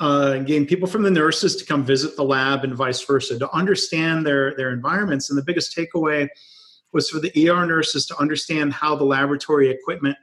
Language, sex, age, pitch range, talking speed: English, male, 40-59, 135-160 Hz, 200 wpm